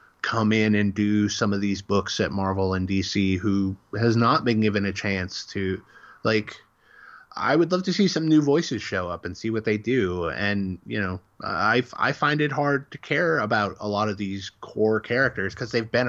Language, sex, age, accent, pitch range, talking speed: English, male, 20-39, American, 95-120 Hz, 210 wpm